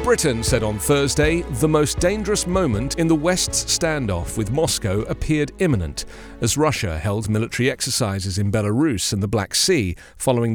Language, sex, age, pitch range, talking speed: English, male, 40-59, 100-155 Hz, 160 wpm